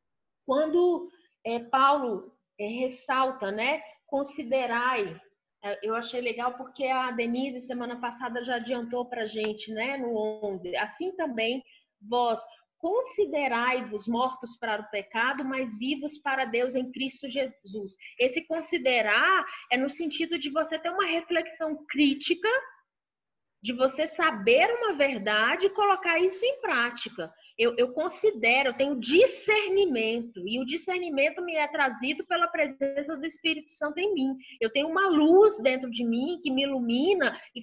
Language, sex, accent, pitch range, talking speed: Portuguese, female, Brazilian, 240-320 Hz, 140 wpm